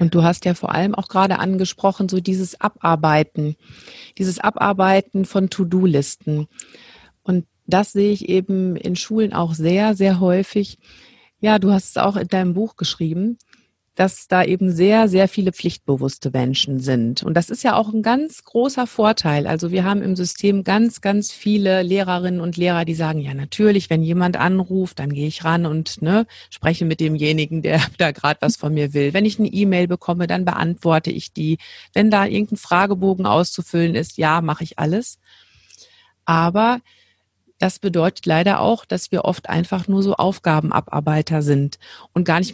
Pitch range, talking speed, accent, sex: 165-205 Hz, 170 wpm, German, female